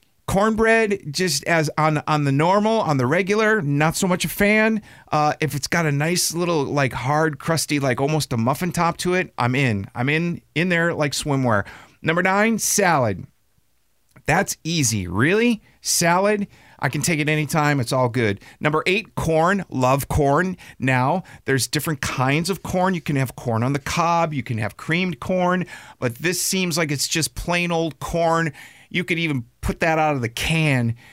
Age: 40-59